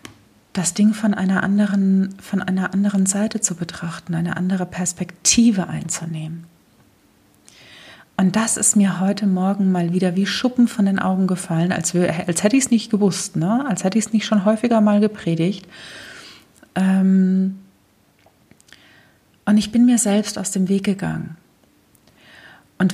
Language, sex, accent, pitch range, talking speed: German, female, German, 170-210 Hz, 140 wpm